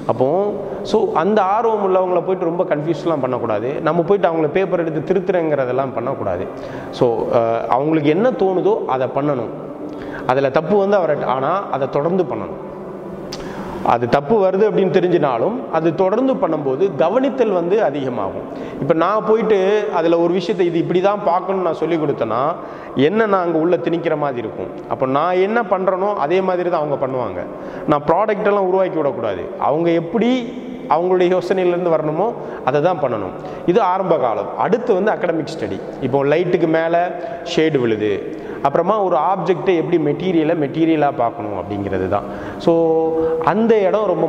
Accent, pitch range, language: native, 150-195 Hz, Tamil